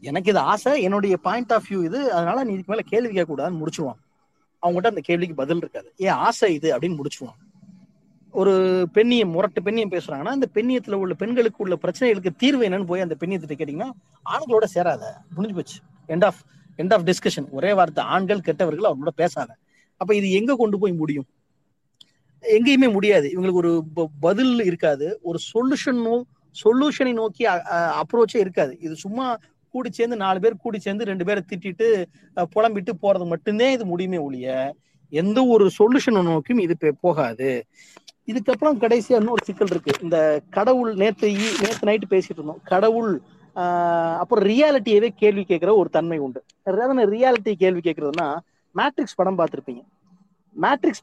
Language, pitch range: Tamil, 170-220 Hz